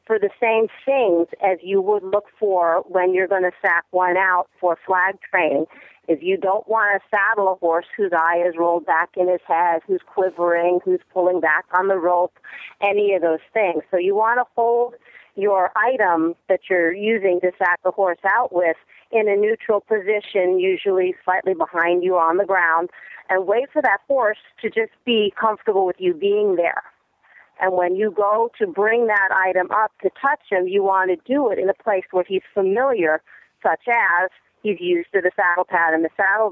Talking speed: 200 wpm